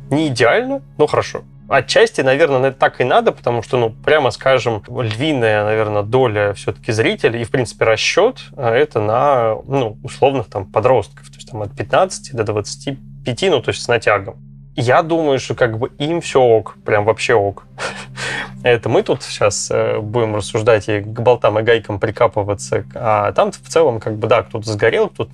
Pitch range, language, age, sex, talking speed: 110-140 Hz, Russian, 20-39, male, 175 wpm